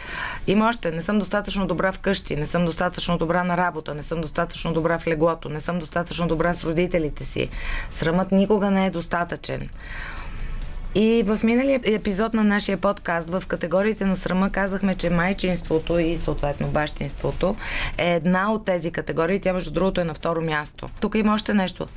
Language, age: Bulgarian, 20-39